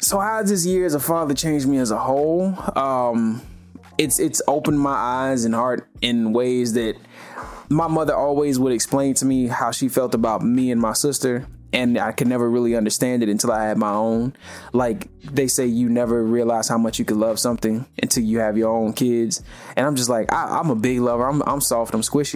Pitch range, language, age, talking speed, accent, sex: 110-135 Hz, English, 20-39, 220 wpm, American, male